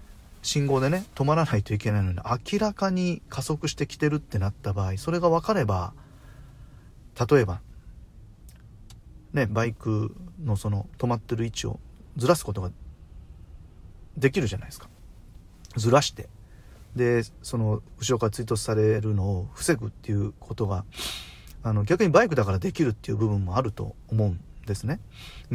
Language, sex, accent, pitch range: Japanese, male, native, 100-125 Hz